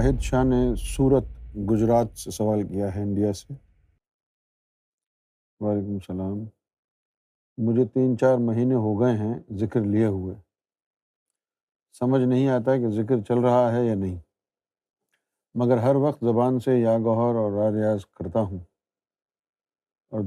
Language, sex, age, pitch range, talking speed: Urdu, male, 50-69, 100-125 Hz, 135 wpm